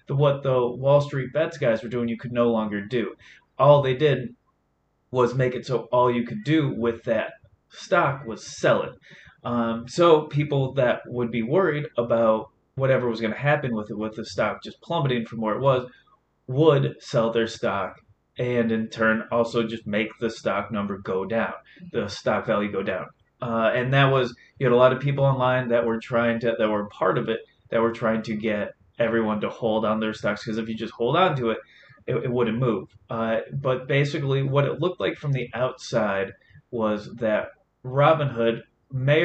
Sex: male